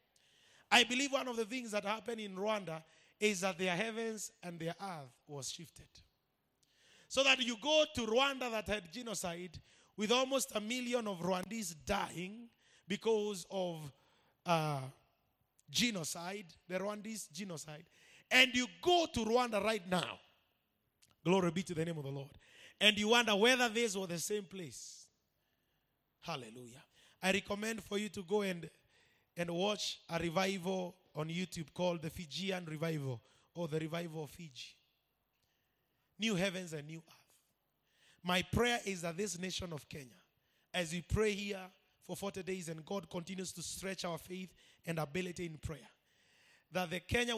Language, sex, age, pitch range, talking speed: English, male, 30-49, 160-210 Hz, 155 wpm